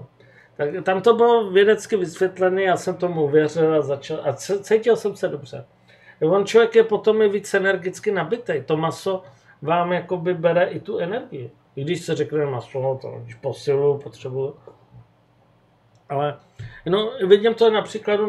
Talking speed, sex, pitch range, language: 160 wpm, male, 150-200 Hz, Czech